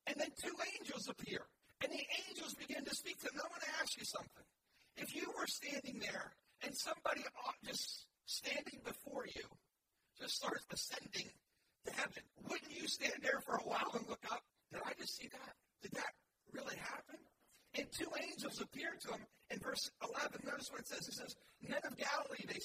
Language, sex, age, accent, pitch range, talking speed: English, male, 50-69, American, 255-300 Hz, 195 wpm